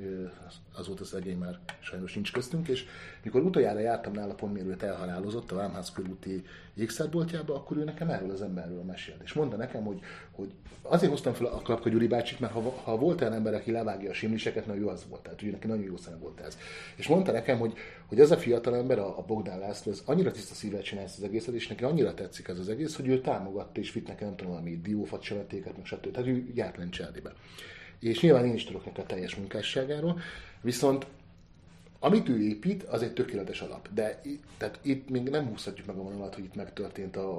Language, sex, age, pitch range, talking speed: Hungarian, male, 30-49, 95-125 Hz, 210 wpm